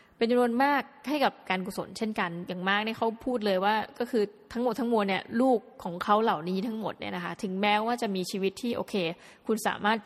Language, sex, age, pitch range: Thai, female, 20-39, 190-235 Hz